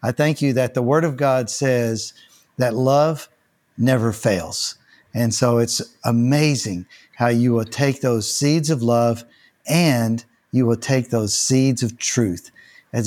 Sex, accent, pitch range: male, American, 115-140 Hz